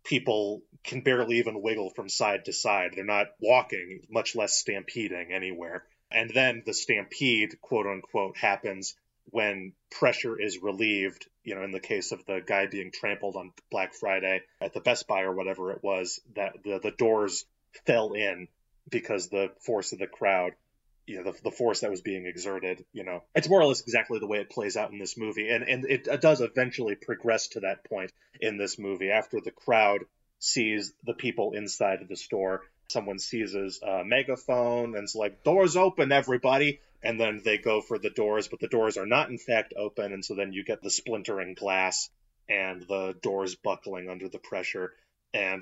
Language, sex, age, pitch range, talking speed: English, male, 30-49, 95-115 Hz, 190 wpm